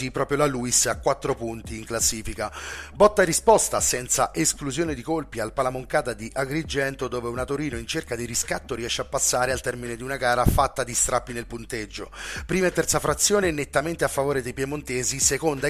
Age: 30-49